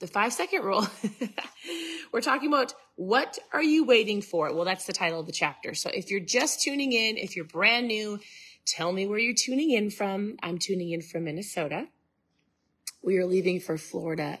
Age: 30-49